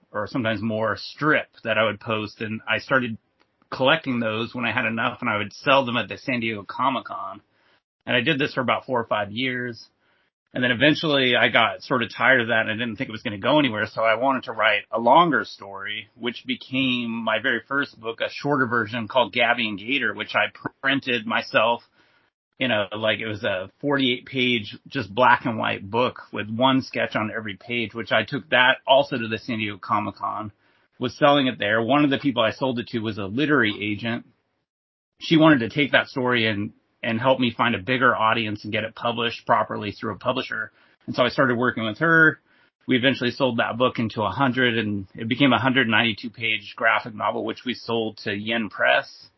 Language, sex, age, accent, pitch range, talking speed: English, male, 30-49, American, 110-130 Hz, 220 wpm